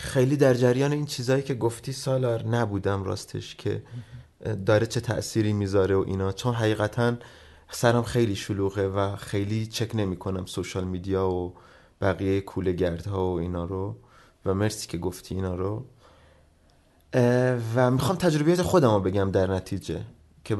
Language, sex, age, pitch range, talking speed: Persian, male, 30-49, 95-130 Hz, 145 wpm